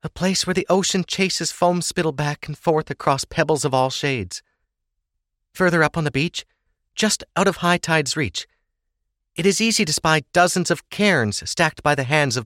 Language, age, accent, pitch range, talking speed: English, 40-59, American, 135-175 Hz, 195 wpm